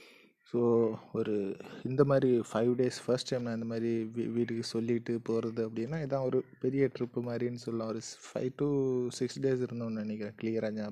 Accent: native